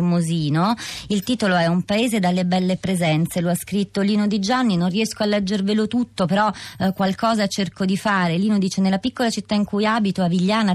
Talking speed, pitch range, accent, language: 200 wpm, 170-205 Hz, native, Italian